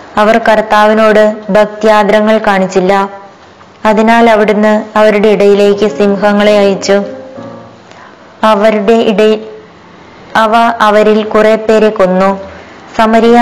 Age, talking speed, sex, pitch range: 20-39, 80 wpm, female, 200-220 Hz